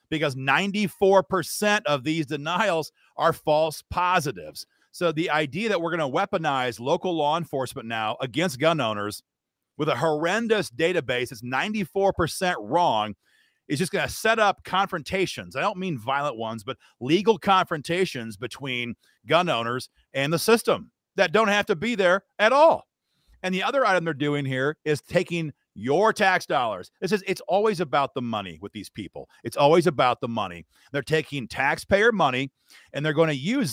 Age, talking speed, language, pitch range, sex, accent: 40-59, 170 wpm, English, 135-185 Hz, male, American